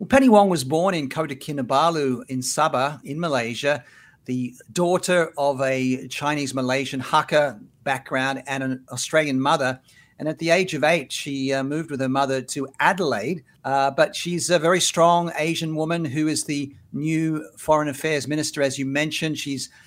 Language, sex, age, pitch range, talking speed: English, male, 50-69, 135-170 Hz, 170 wpm